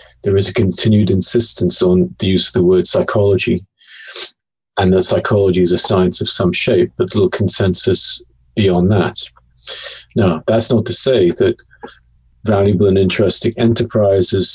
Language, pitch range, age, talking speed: English, 85-110 Hz, 40-59, 150 wpm